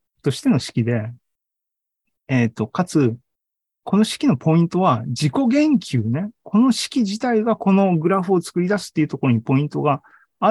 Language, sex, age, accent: Japanese, male, 40-59, native